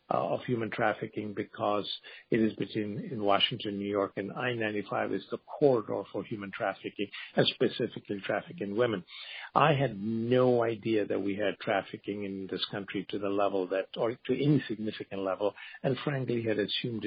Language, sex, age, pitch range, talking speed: English, male, 50-69, 100-120 Hz, 165 wpm